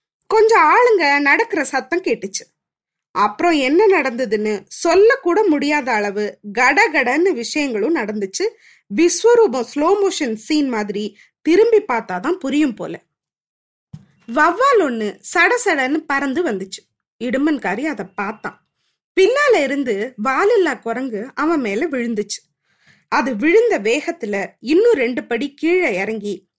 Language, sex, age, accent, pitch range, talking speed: Tamil, female, 20-39, native, 230-360 Hz, 105 wpm